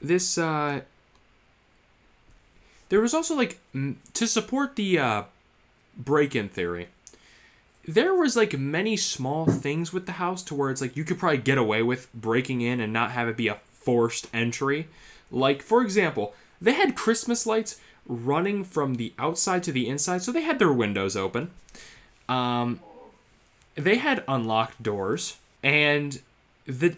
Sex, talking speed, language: male, 155 wpm, English